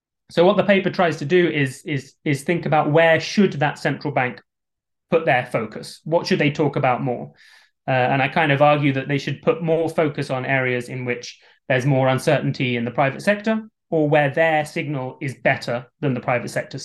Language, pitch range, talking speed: English, 135-165 Hz, 210 wpm